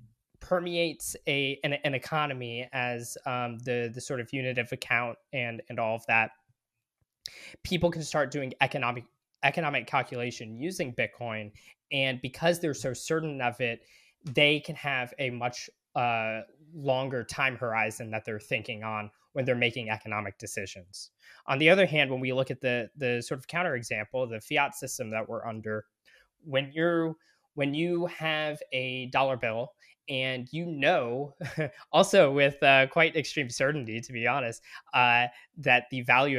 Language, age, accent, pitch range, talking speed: English, 20-39, American, 115-145 Hz, 160 wpm